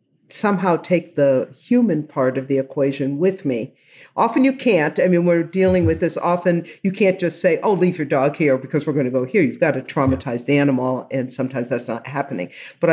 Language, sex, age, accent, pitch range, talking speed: English, female, 50-69, American, 145-205 Hz, 215 wpm